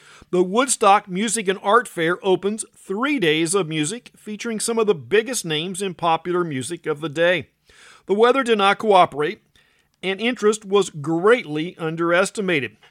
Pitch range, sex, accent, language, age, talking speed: 155-205 Hz, male, American, English, 50-69, 155 wpm